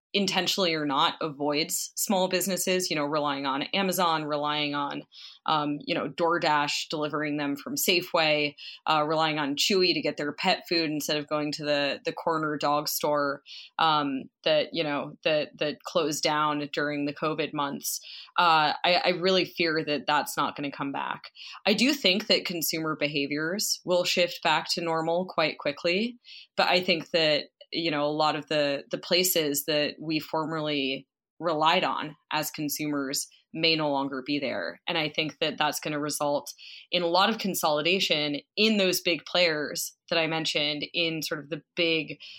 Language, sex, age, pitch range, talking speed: English, female, 20-39, 150-180 Hz, 175 wpm